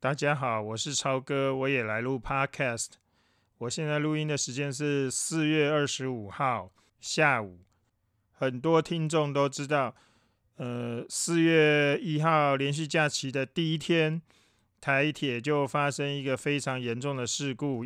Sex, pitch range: male, 120-150 Hz